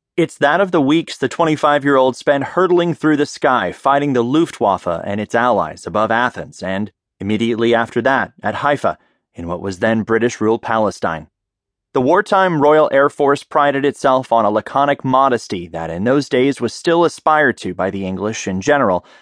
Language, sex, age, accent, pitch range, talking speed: English, male, 30-49, American, 110-150 Hz, 175 wpm